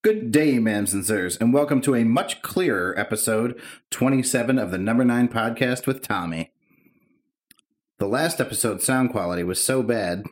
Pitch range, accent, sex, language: 100-125 Hz, American, male, English